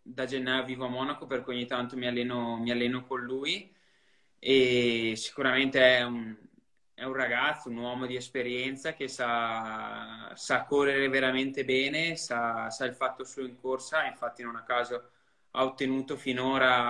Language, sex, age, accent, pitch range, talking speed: Italian, male, 20-39, native, 120-135 Hz, 155 wpm